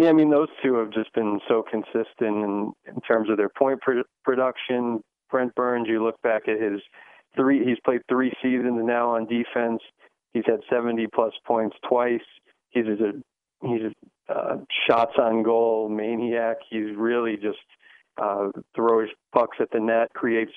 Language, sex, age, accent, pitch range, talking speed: English, male, 40-59, American, 110-125 Hz, 160 wpm